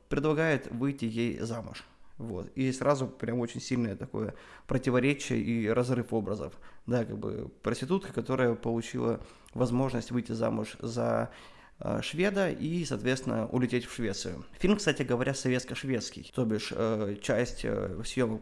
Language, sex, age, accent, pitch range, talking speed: Russian, male, 20-39, native, 115-140 Hz, 135 wpm